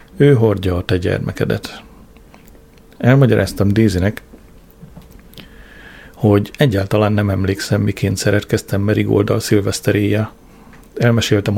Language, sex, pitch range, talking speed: Hungarian, male, 100-115 Hz, 85 wpm